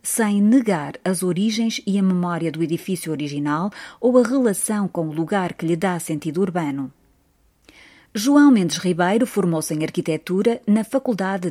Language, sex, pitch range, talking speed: Portuguese, female, 165-210 Hz, 150 wpm